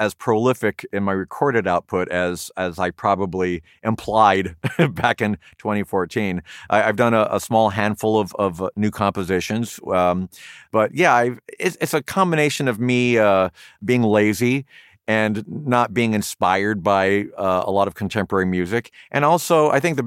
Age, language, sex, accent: 50-69, English, male, American